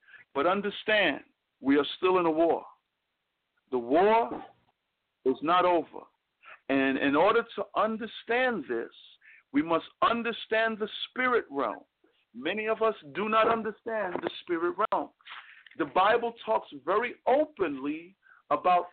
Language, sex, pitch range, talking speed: English, male, 170-230 Hz, 125 wpm